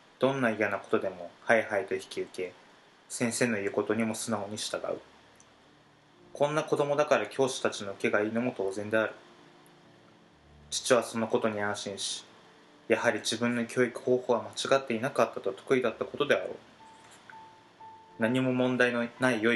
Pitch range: 100-125 Hz